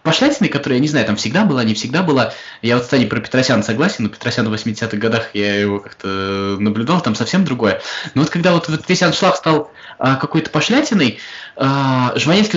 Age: 20-39